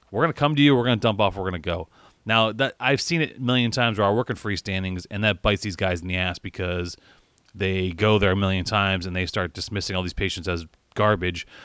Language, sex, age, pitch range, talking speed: English, male, 30-49, 95-125 Hz, 270 wpm